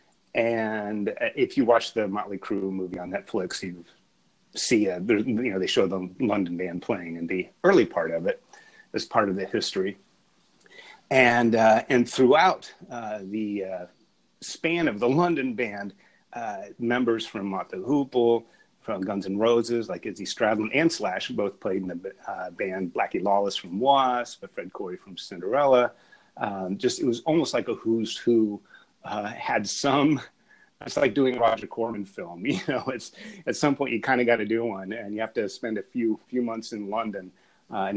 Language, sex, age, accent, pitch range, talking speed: English, male, 30-49, American, 100-125 Hz, 185 wpm